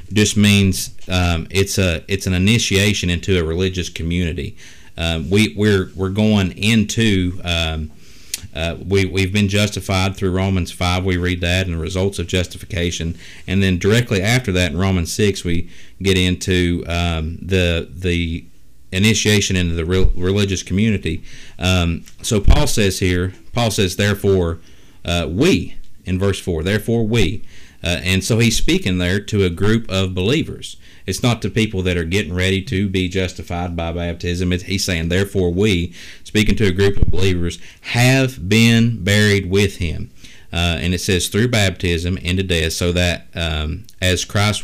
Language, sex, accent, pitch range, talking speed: English, male, American, 85-100 Hz, 165 wpm